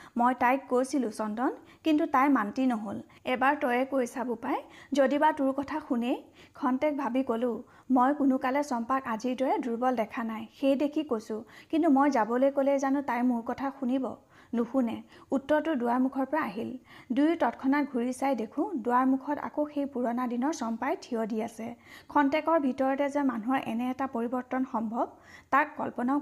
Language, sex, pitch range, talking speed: Hindi, female, 240-280 Hz, 115 wpm